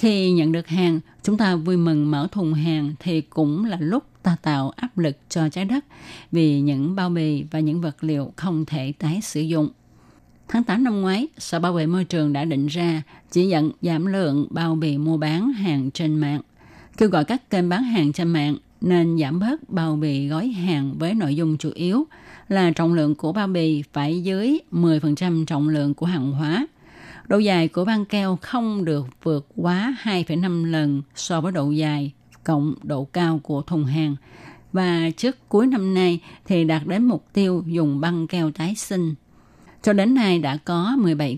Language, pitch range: Vietnamese, 150-185 Hz